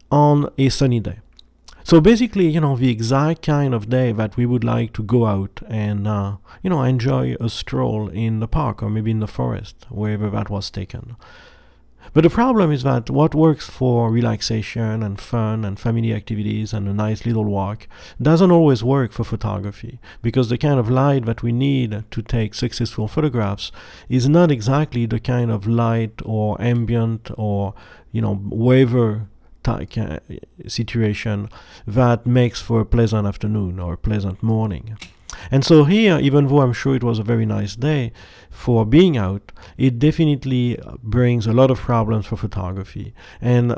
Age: 50-69